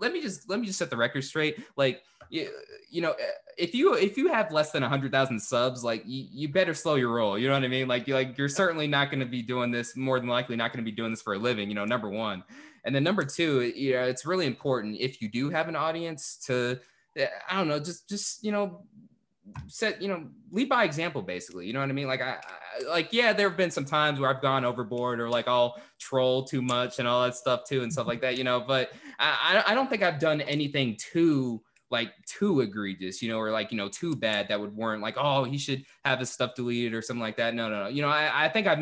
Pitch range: 120-160 Hz